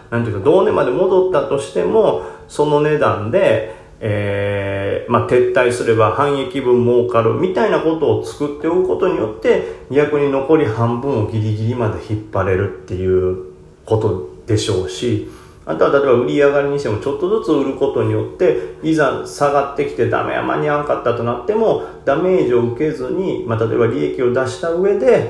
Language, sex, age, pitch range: Japanese, male, 30-49, 105-145 Hz